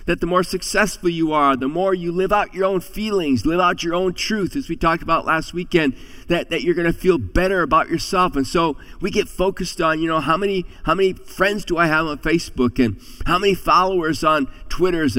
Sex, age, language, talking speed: male, 50-69, English, 230 wpm